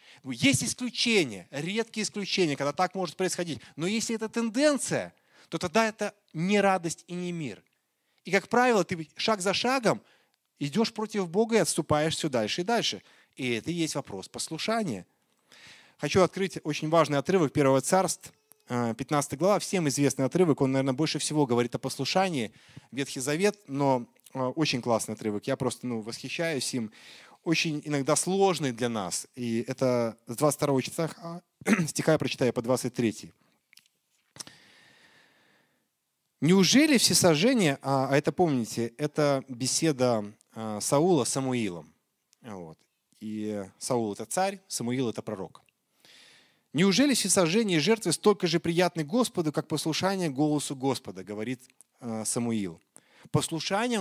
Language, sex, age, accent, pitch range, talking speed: Russian, male, 30-49, native, 130-185 Hz, 135 wpm